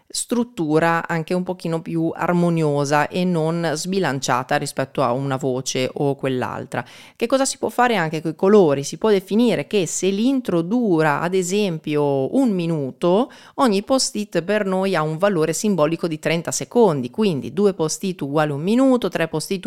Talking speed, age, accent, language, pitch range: 165 wpm, 30-49, native, Italian, 145-195 Hz